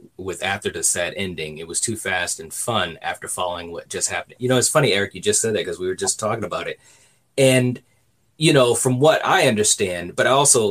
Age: 30-49